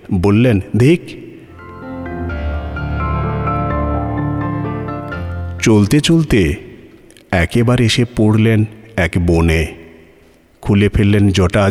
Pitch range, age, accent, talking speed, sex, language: 85-115 Hz, 50-69, native, 60 wpm, male, Bengali